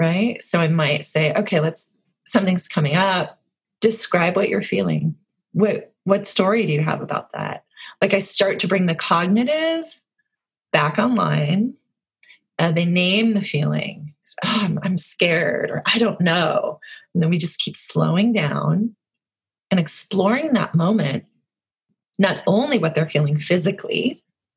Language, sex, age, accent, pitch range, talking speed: English, female, 30-49, American, 160-210 Hz, 150 wpm